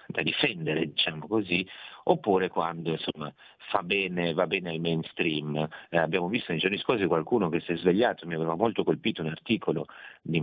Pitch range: 80-90 Hz